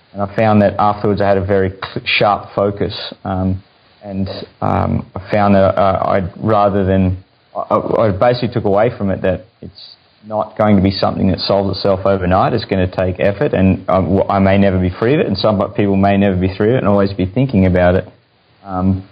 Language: English